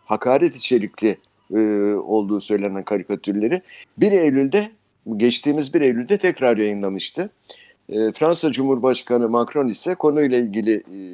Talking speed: 110 wpm